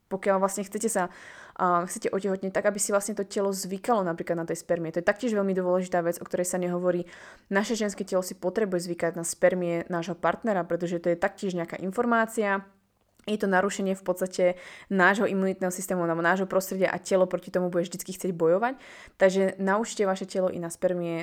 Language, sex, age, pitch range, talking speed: Slovak, female, 20-39, 170-195 Hz, 190 wpm